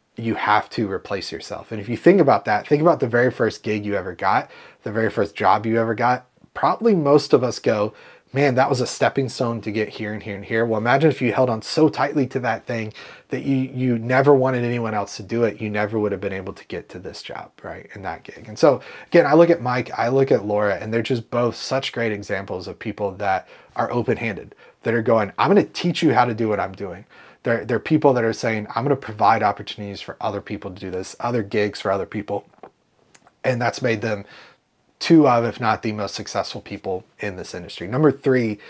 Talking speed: 245 wpm